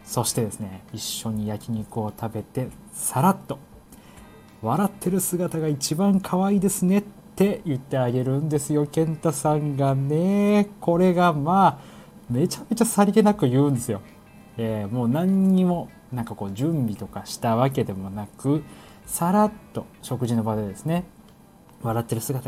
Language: Japanese